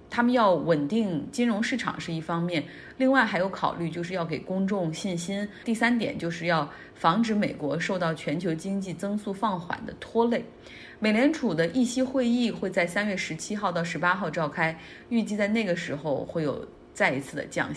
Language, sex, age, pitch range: Chinese, female, 30-49, 170-230 Hz